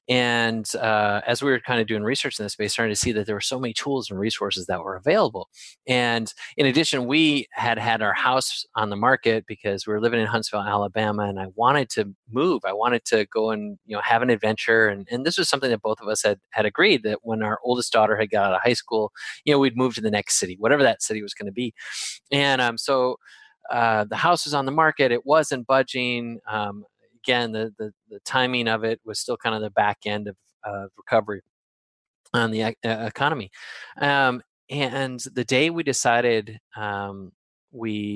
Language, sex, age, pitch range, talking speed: English, male, 30-49, 105-130 Hz, 220 wpm